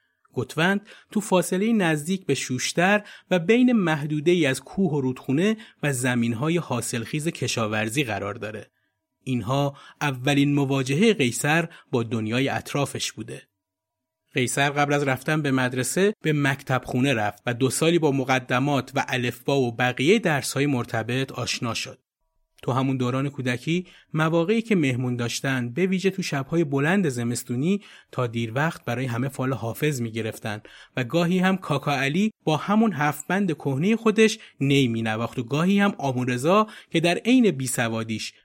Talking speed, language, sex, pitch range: 150 wpm, Persian, male, 125-170 Hz